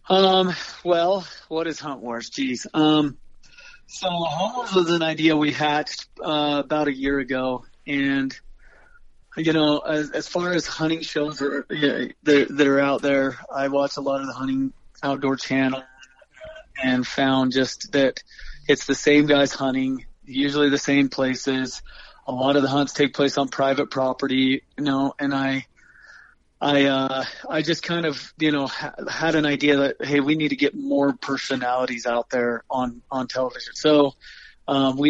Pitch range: 130-145 Hz